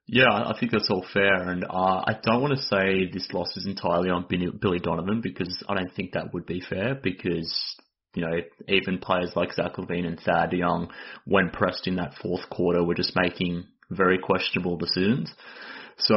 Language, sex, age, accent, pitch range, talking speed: English, male, 20-39, Australian, 90-105 Hz, 195 wpm